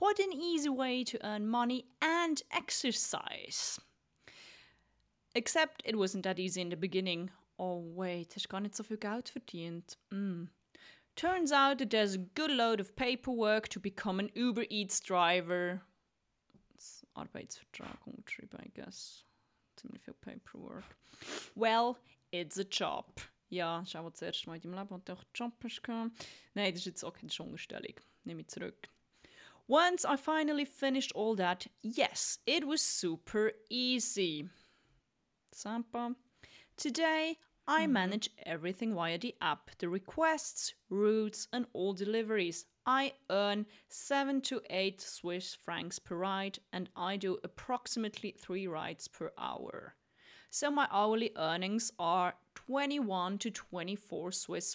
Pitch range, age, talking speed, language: 185-260 Hz, 30-49, 135 wpm, German